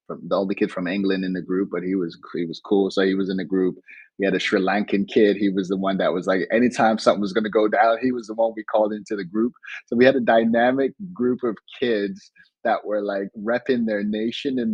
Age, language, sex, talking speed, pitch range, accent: 30-49, English, male, 255 wpm, 100-125 Hz, American